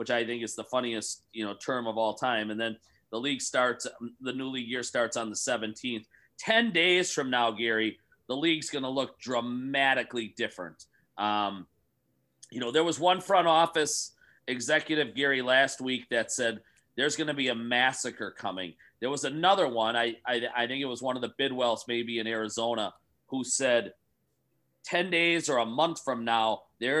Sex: male